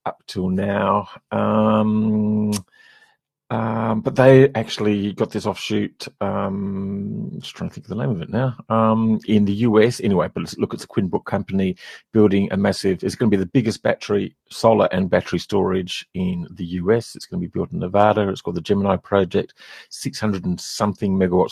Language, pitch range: English, 95-110 Hz